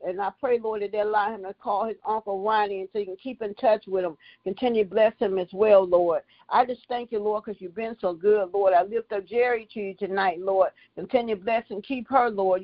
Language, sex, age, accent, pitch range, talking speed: English, female, 50-69, American, 195-235 Hz, 260 wpm